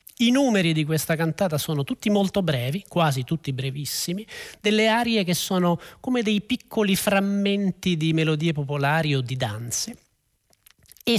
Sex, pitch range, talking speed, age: male, 160-220 Hz, 145 wpm, 40-59